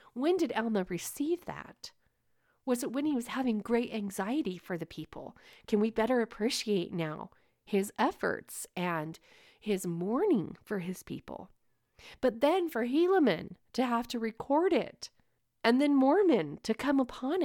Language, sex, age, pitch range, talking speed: English, female, 40-59, 180-235 Hz, 150 wpm